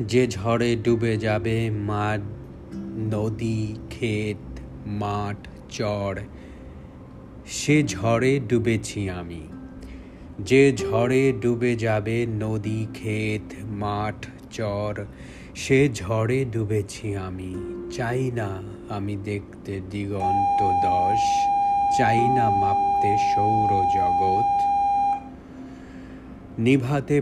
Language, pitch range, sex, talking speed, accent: English, 95-130 Hz, male, 55 wpm, Indian